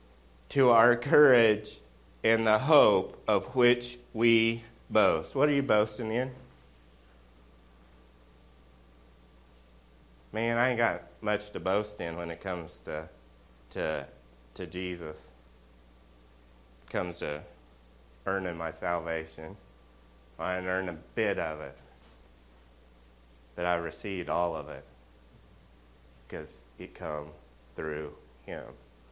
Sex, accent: male, American